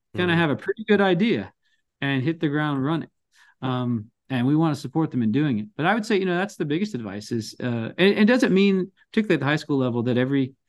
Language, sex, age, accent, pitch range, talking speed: English, male, 40-59, American, 120-160 Hz, 270 wpm